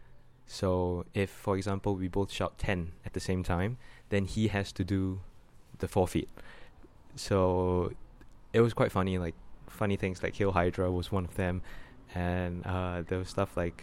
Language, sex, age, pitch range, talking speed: English, male, 20-39, 90-105 Hz, 180 wpm